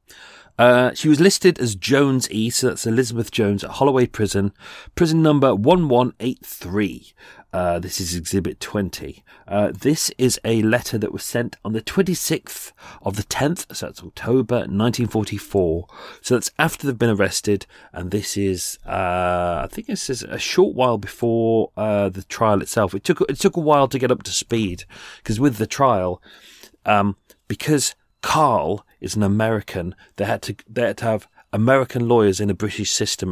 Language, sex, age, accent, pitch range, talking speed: English, male, 40-59, British, 95-125 Hz, 170 wpm